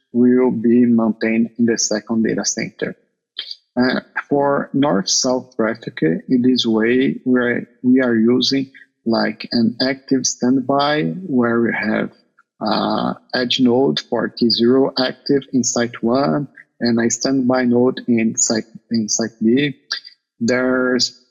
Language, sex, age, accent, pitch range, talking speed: English, male, 50-69, Brazilian, 115-130 Hz, 125 wpm